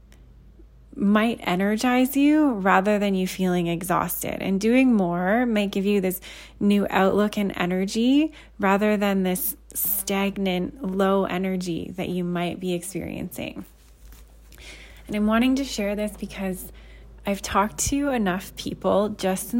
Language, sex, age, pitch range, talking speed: English, female, 20-39, 175-210 Hz, 135 wpm